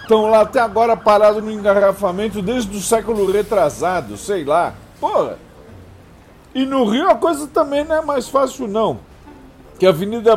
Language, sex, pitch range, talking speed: Portuguese, male, 185-230 Hz, 160 wpm